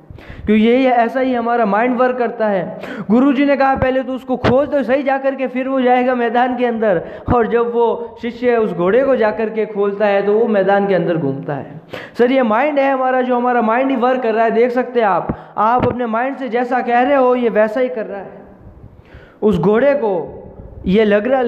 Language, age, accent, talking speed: Hindi, 20-39, native, 225 wpm